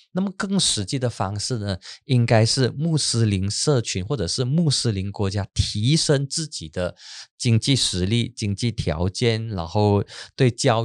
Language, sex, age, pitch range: Chinese, male, 20-39, 95-130 Hz